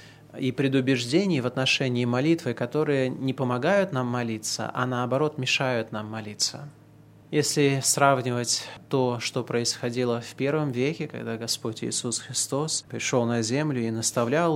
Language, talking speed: Russian, 130 wpm